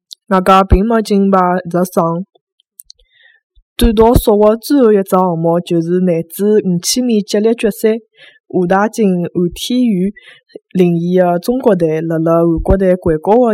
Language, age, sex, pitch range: Chinese, 20-39, female, 175-225 Hz